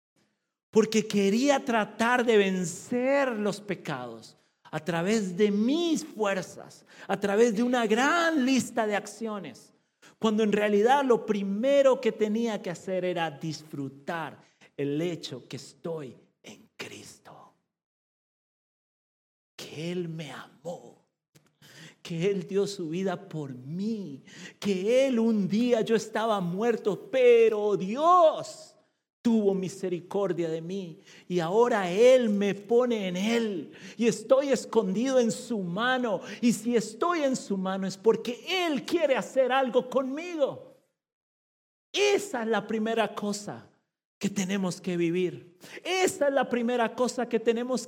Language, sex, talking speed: Spanish, male, 130 wpm